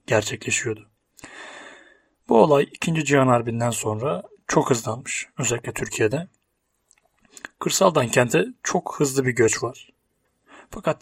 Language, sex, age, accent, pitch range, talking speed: Turkish, male, 30-49, native, 115-145 Hz, 105 wpm